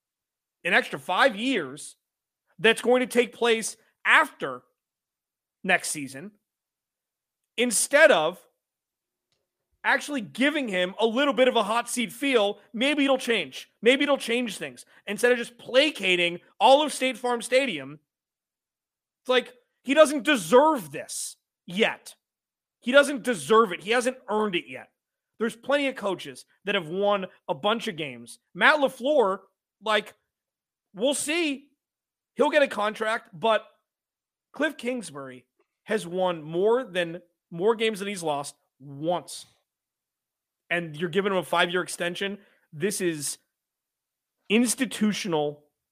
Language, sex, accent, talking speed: English, male, American, 130 wpm